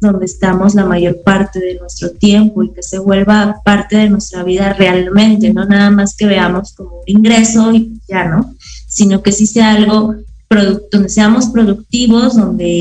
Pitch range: 200-225 Hz